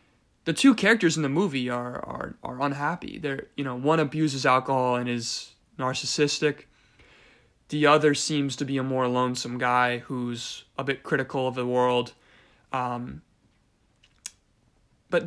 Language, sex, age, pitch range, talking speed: English, male, 20-39, 130-160 Hz, 145 wpm